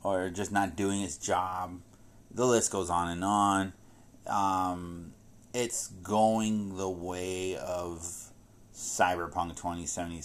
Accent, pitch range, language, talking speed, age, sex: American, 85-110 Hz, English, 125 wpm, 30-49, male